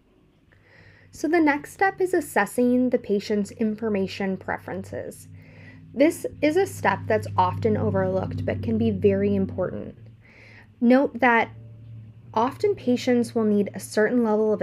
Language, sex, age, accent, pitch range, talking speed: English, female, 10-29, American, 175-225 Hz, 130 wpm